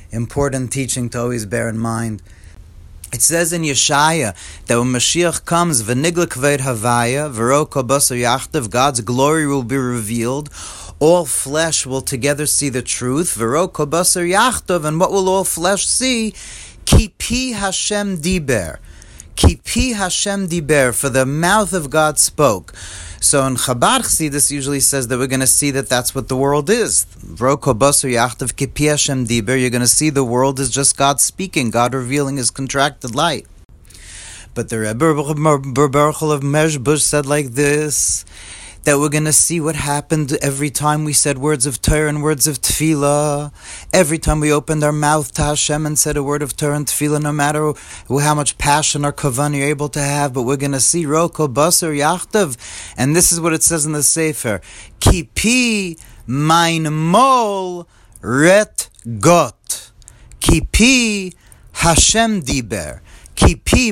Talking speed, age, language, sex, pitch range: 155 wpm, 30-49, English, male, 125-155 Hz